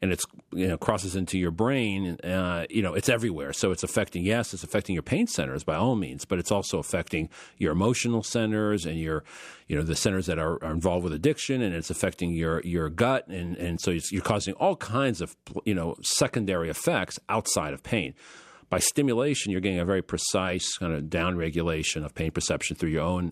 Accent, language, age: American, English, 40-59